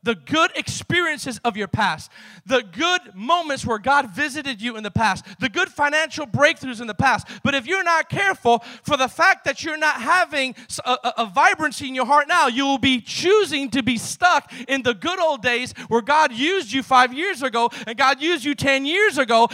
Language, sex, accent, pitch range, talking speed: English, male, American, 265-345 Hz, 210 wpm